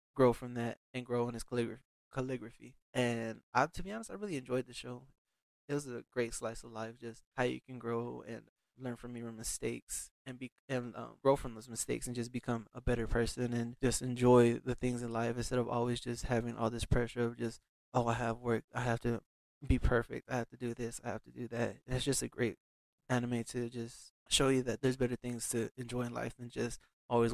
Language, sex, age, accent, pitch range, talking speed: English, male, 20-39, American, 115-125 Hz, 235 wpm